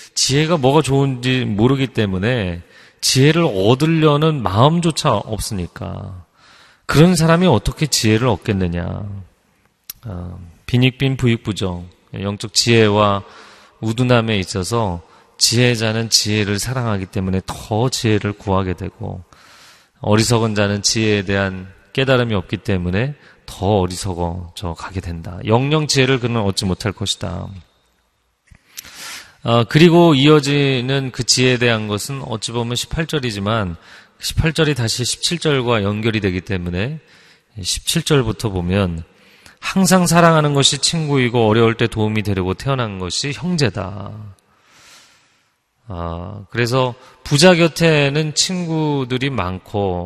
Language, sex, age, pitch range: Korean, male, 30-49, 95-135 Hz